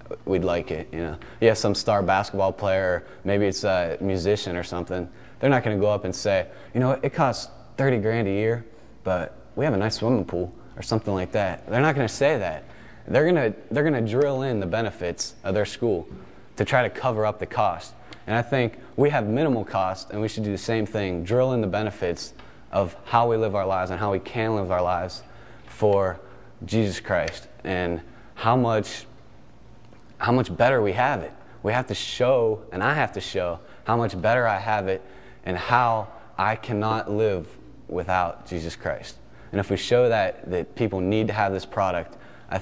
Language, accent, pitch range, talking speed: English, American, 95-115 Hz, 205 wpm